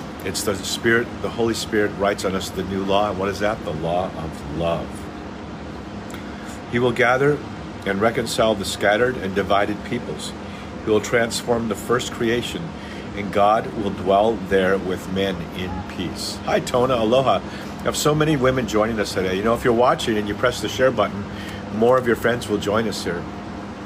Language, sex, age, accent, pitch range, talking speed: English, male, 50-69, American, 95-110 Hz, 190 wpm